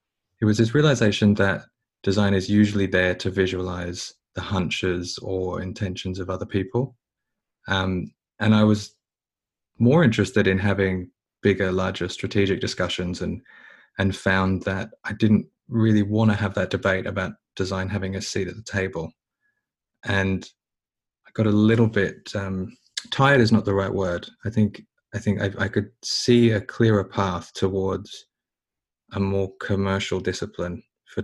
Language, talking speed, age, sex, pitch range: English, 155 wpm, 20-39, male, 95-110 Hz